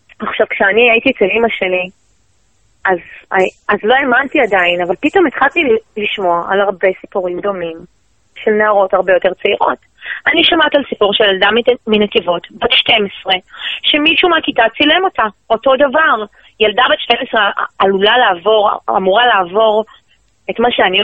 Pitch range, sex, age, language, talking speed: 195-250 Hz, female, 30-49, Hebrew, 140 wpm